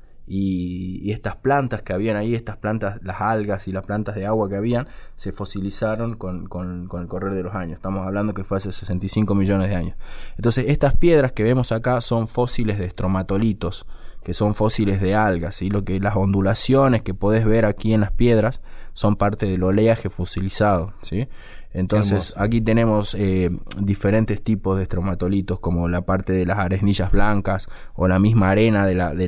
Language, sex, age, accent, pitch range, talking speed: Spanish, male, 20-39, Argentinian, 95-115 Hz, 190 wpm